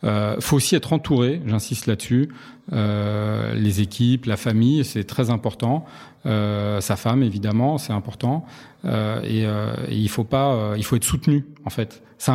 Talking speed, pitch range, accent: 175 wpm, 110-135 Hz, French